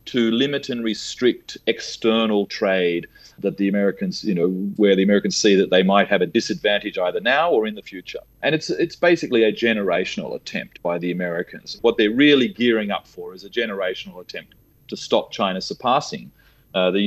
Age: 30-49